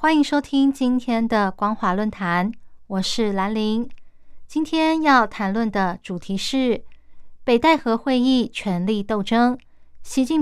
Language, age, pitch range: Chinese, 20-39, 200-260 Hz